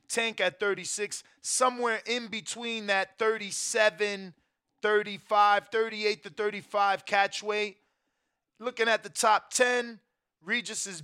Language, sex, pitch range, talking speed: English, male, 180-235 Hz, 115 wpm